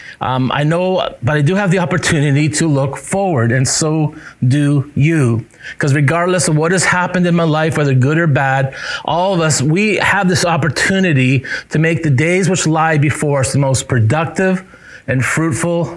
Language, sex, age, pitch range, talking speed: English, male, 30-49, 125-160 Hz, 185 wpm